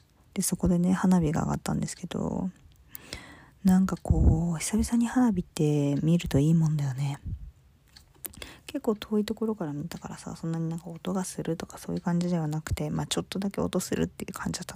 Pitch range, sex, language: 145-195 Hz, female, Japanese